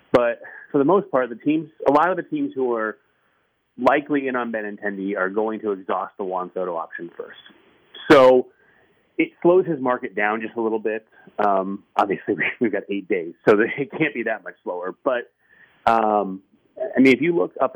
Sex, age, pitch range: male, 30-49, 100-130 Hz